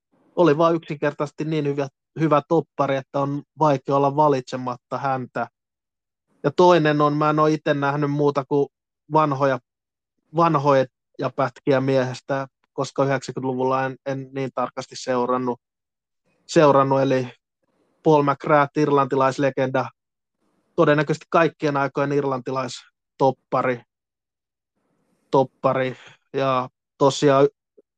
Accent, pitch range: native, 130-145 Hz